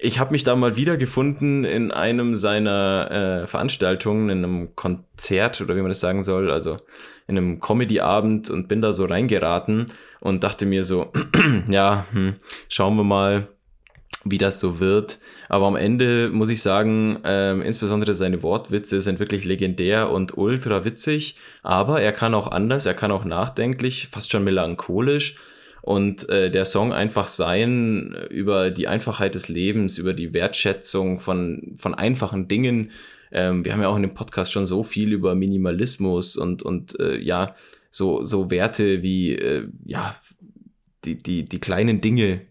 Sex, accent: male, German